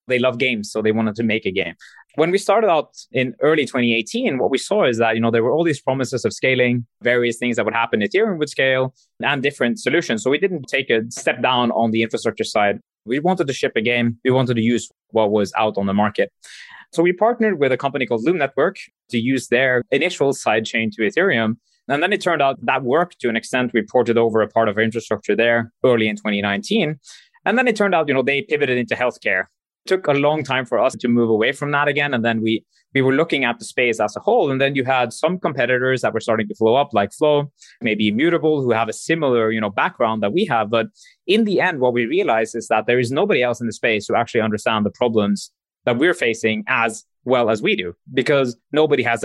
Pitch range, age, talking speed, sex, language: 115-140 Hz, 20-39, 245 wpm, male, English